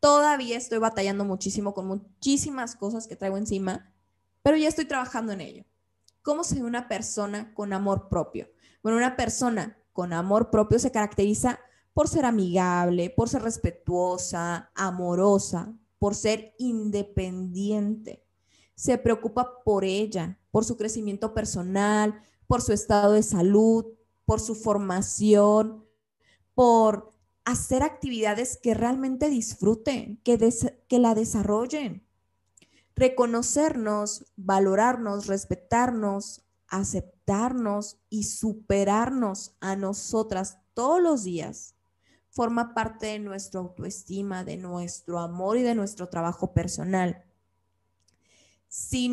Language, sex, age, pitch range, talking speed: Spanish, female, 20-39, 185-235 Hz, 115 wpm